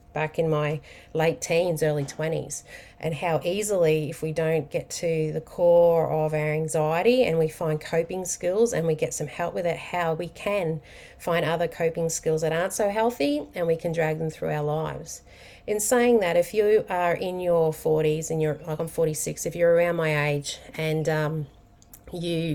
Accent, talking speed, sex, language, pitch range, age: Australian, 195 wpm, female, English, 160-175 Hz, 30-49